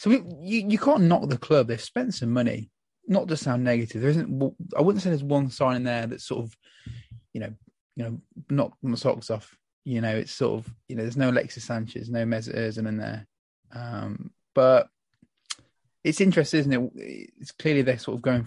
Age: 20-39